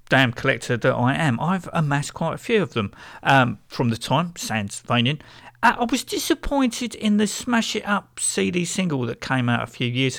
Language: English